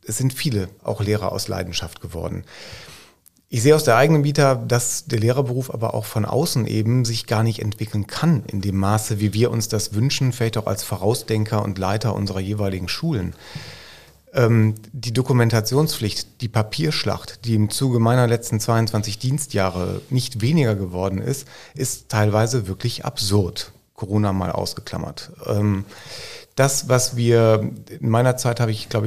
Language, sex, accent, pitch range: German, male, German, 105-125 Hz